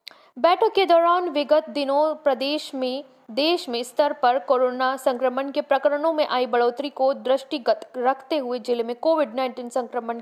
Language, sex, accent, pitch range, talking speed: Hindi, female, native, 245-295 Hz, 160 wpm